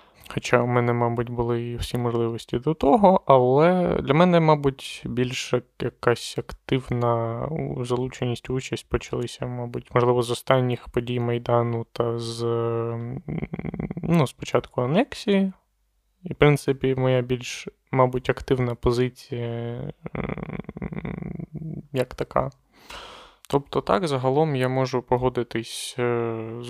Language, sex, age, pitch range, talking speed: Ukrainian, male, 20-39, 115-135 Hz, 110 wpm